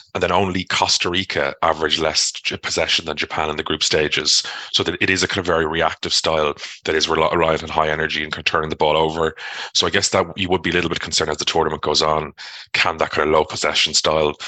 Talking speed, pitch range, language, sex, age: 240 wpm, 80-95 Hz, English, male, 30-49